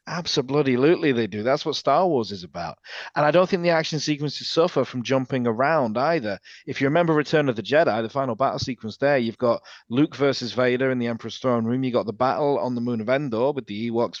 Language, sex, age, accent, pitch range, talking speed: English, male, 40-59, British, 120-150 Hz, 230 wpm